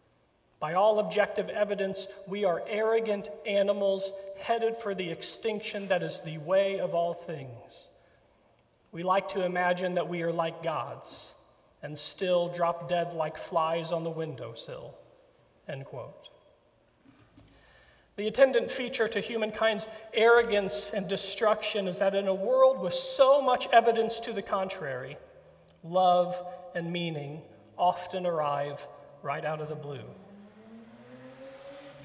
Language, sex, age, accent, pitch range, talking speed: English, male, 40-59, American, 170-210 Hz, 130 wpm